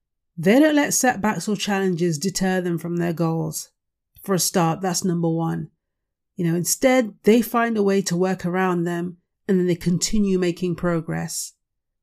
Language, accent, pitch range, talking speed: English, British, 170-210 Hz, 170 wpm